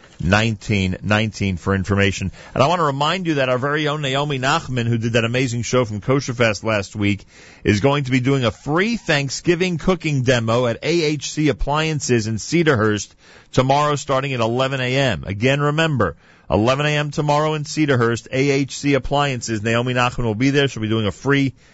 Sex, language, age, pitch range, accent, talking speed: male, English, 40-59, 105-140 Hz, American, 175 wpm